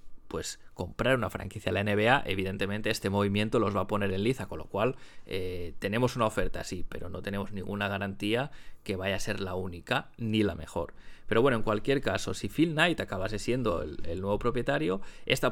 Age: 20-39